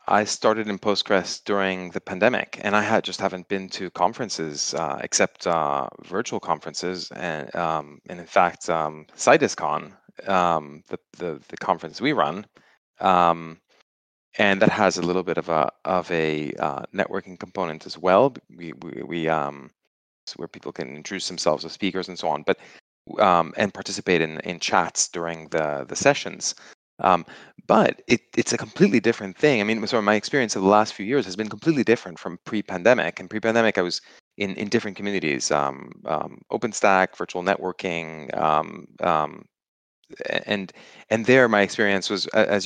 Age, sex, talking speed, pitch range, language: 30-49, male, 175 wpm, 85-105 Hz, English